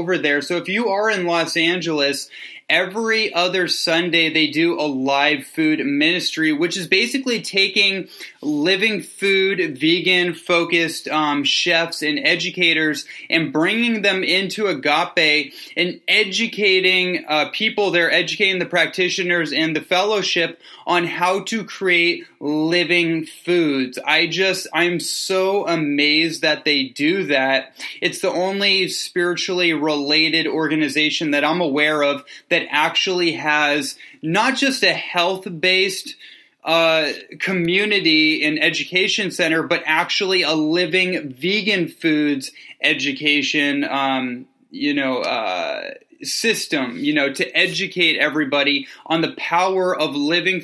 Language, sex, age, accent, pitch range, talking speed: English, male, 20-39, American, 150-185 Hz, 125 wpm